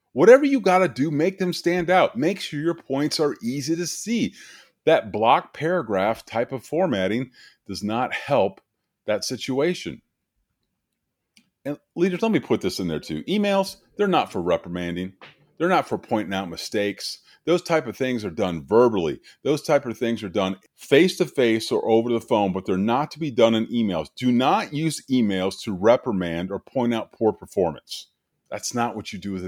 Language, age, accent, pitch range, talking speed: English, 30-49, American, 100-165 Hz, 185 wpm